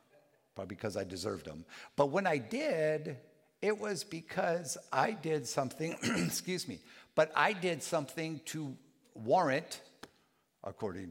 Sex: male